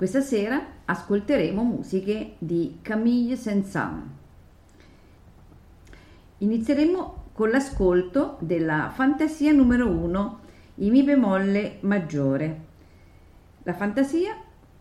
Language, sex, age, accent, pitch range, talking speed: Italian, female, 40-59, native, 155-205 Hz, 80 wpm